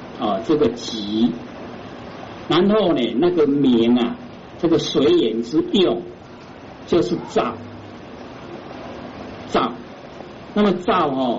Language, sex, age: Chinese, male, 50-69